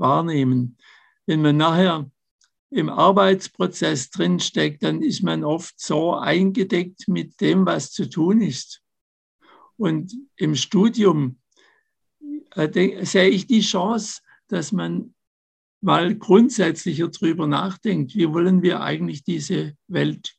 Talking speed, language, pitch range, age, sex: 110 wpm, German, 145-190 Hz, 60-79, male